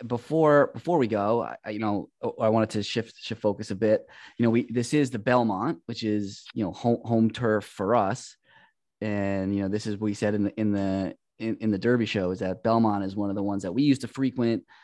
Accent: American